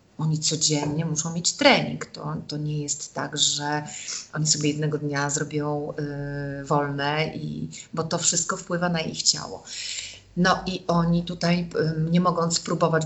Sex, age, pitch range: female, 30-49, 150-180 Hz